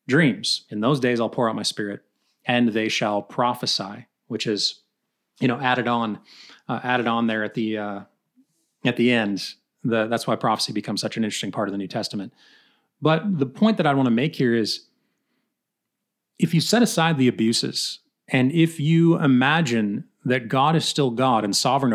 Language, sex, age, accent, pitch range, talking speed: English, male, 30-49, American, 115-145 Hz, 185 wpm